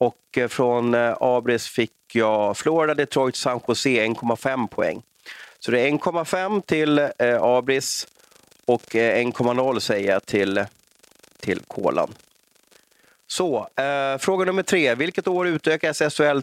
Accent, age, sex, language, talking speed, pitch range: native, 30-49, male, Swedish, 115 wpm, 115-150 Hz